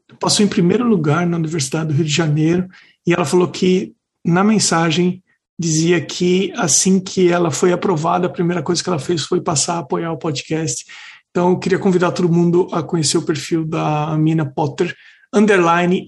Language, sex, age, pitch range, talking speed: Portuguese, male, 50-69, 160-185 Hz, 185 wpm